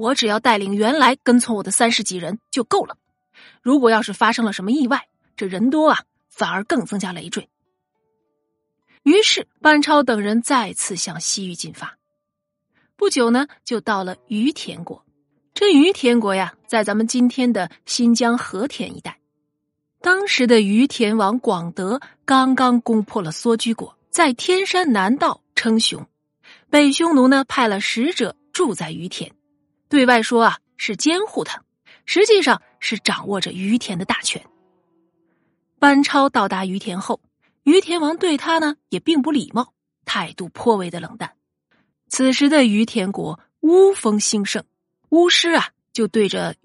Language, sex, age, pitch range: Chinese, female, 30-49, 200-280 Hz